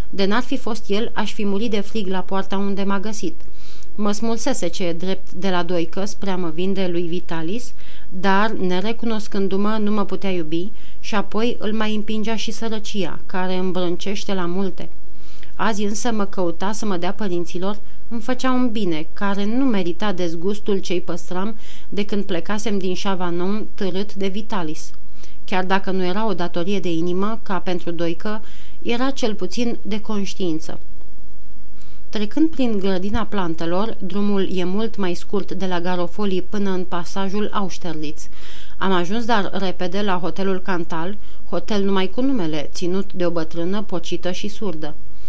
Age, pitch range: 30-49, 180-215 Hz